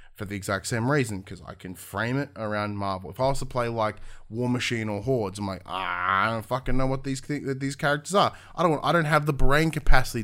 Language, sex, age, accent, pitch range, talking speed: English, male, 20-39, Australian, 100-125 Hz, 260 wpm